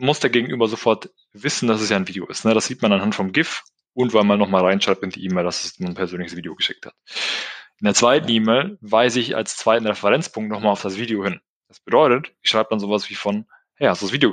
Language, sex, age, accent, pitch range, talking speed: German, male, 20-39, German, 105-130 Hz, 245 wpm